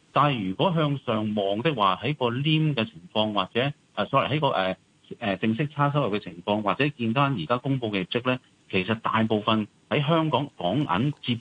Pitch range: 95-140 Hz